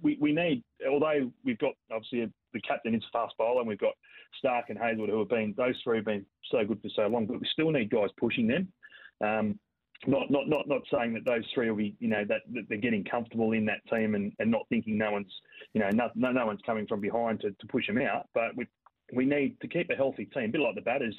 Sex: male